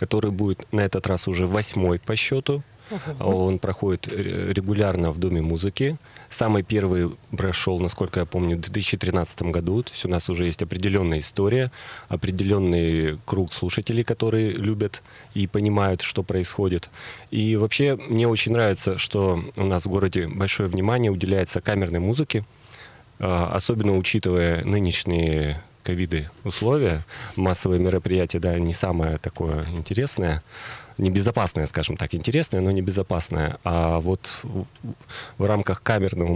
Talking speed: 130 wpm